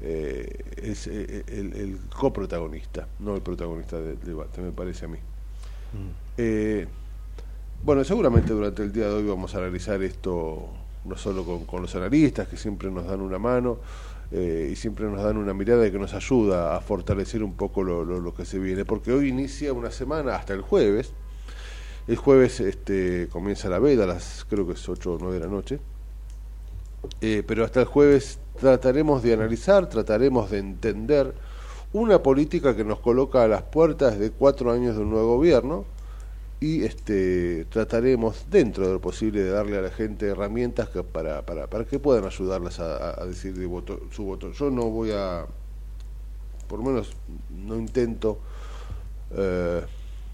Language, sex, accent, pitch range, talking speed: Spanish, male, Argentinian, 90-115 Hz, 175 wpm